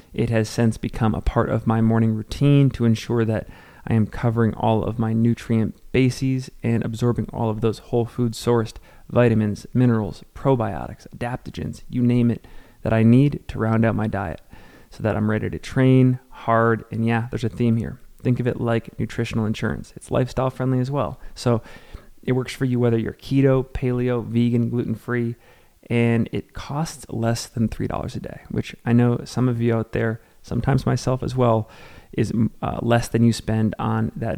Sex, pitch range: male, 110-125 Hz